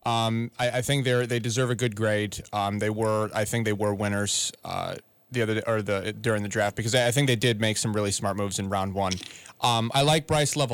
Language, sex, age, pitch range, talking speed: English, male, 30-49, 105-125 Hz, 245 wpm